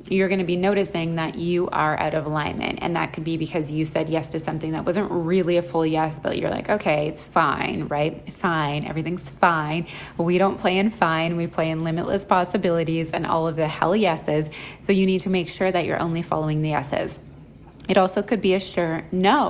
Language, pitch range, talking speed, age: English, 160-195 Hz, 220 wpm, 20-39